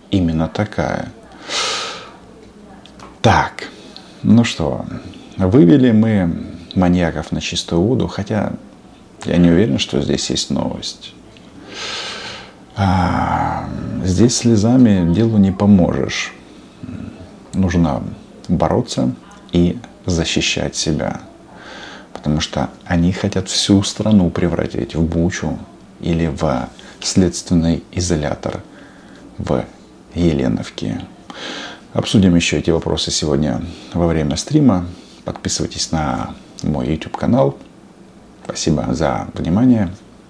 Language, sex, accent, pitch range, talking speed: Russian, male, native, 80-110 Hz, 90 wpm